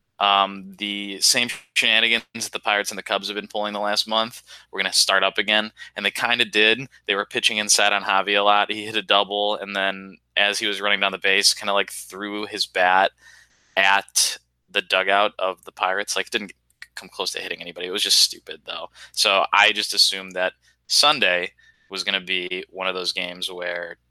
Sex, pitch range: male, 95-110 Hz